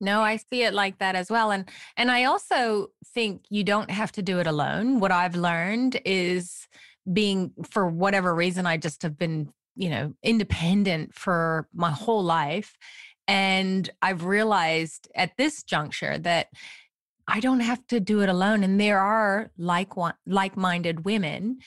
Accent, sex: American, female